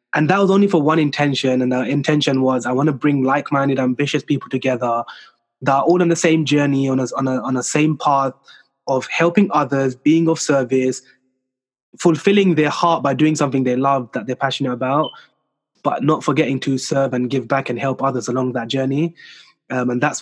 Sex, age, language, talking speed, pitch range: male, 20-39, English, 200 wpm, 130-155 Hz